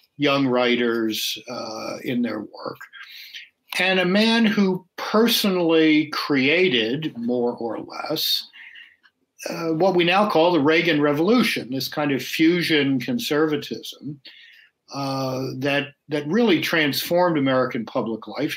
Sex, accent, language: male, American, English